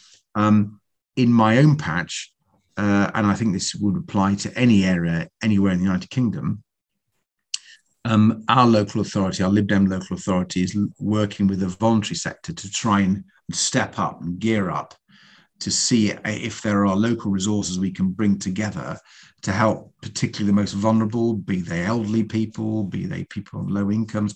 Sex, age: male, 50-69